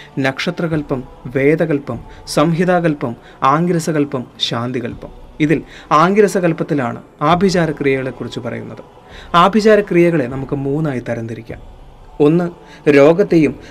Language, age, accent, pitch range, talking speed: Malayalam, 30-49, native, 135-170 Hz, 65 wpm